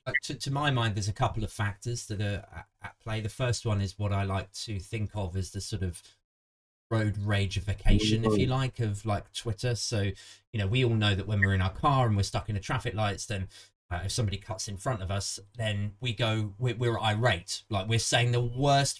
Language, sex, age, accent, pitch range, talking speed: English, male, 30-49, British, 95-120 Hz, 245 wpm